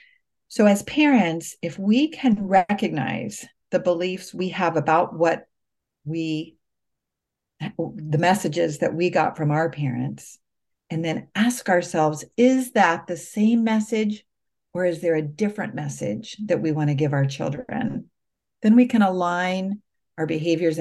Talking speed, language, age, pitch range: 145 wpm, English, 40-59, 155-205 Hz